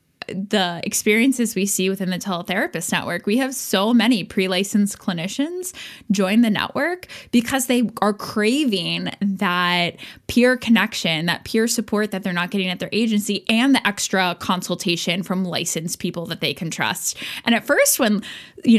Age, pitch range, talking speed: 10-29, 190-235 Hz, 165 wpm